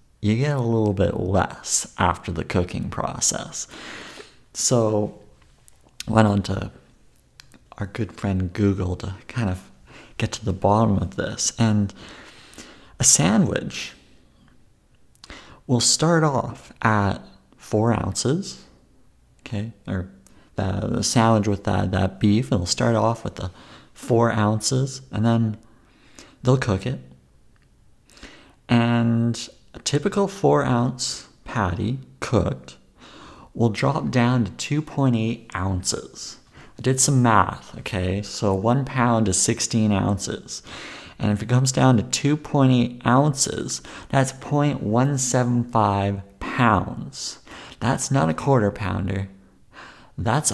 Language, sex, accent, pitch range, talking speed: English, male, American, 95-125 Hz, 115 wpm